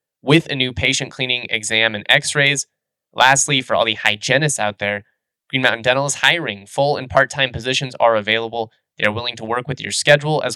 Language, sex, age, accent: English, male, 20-39, American